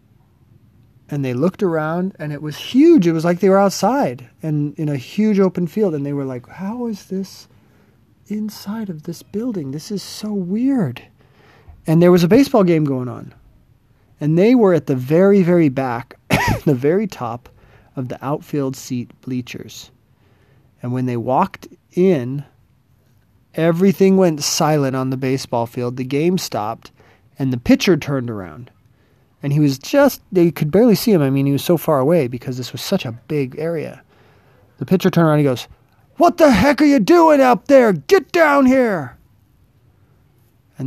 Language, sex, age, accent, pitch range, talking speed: English, male, 30-49, American, 125-195 Hz, 180 wpm